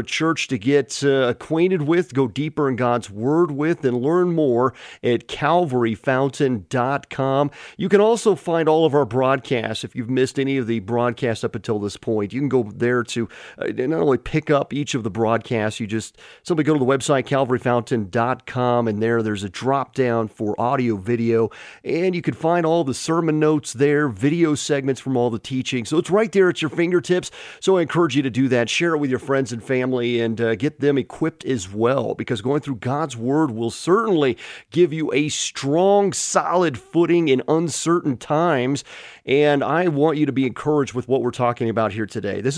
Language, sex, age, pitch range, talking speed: English, male, 40-59, 120-155 Hz, 195 wpm